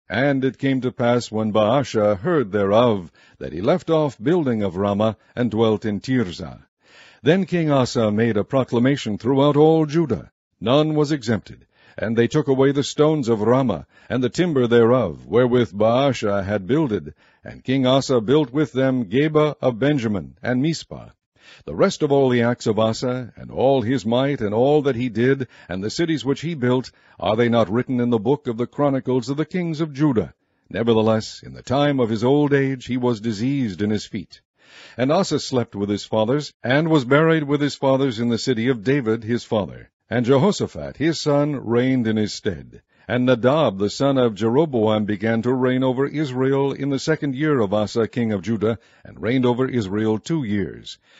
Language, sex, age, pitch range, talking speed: English, male, 60-79, 110-140 Hz, 190 wpm